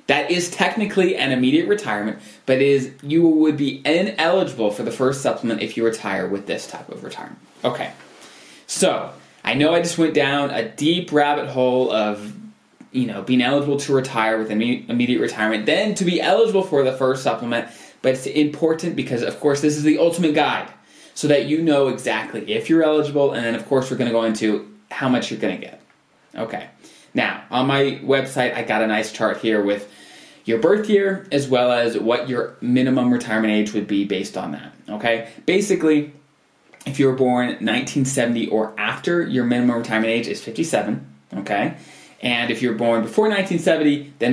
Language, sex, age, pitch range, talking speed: English, male, 20-39, 115-155 Hz, 190 wpm